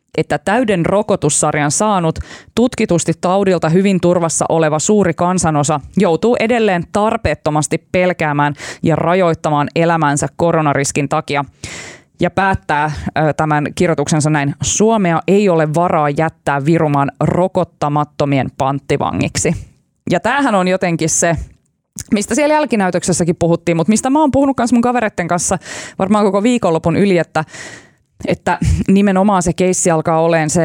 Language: Finnish